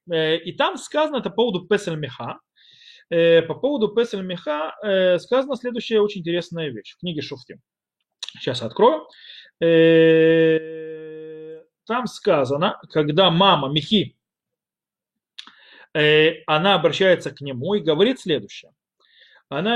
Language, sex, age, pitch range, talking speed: Russian, male, 30-49, 160-235 Hz, 100 wpm